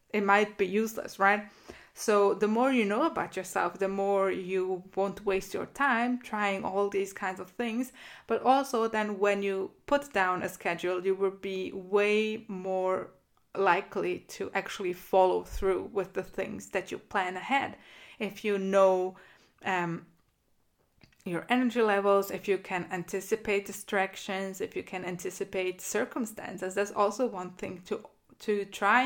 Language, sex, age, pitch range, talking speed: English, female, 20-39, 190-220 Hz, 155 wpm